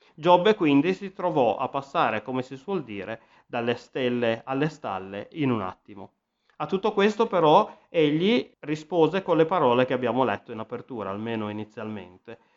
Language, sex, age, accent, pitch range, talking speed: Italian, male, 30-49, native, 110-135 Hz, 160 wpm